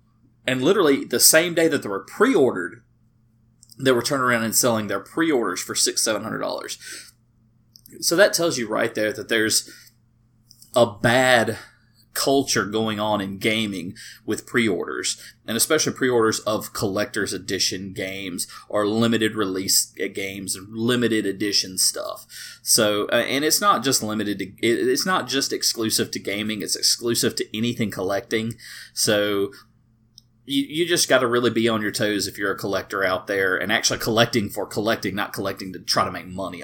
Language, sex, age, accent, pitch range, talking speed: English, male, 30-49, American, 100-120 Hz, 165 wpm